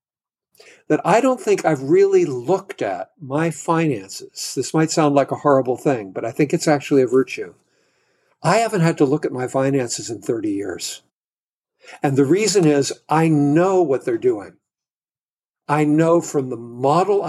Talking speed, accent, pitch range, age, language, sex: 170 wpm, American, 145-195 Hz, 60-79, English, male